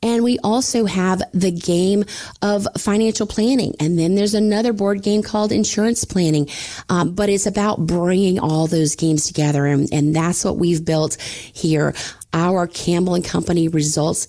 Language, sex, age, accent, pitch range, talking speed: English, female, 30-49, American, 150-185 Hz, 165 wpm